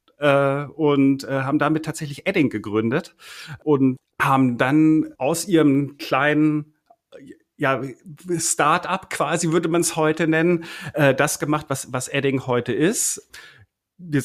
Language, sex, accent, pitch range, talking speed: German, male, German, 125-155 Hz, 120 wpm